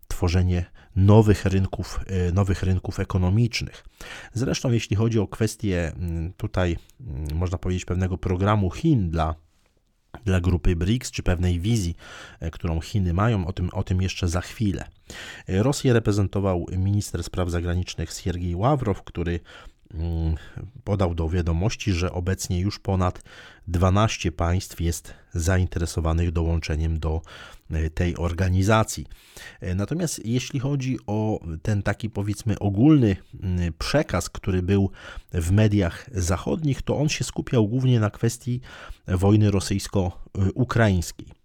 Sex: male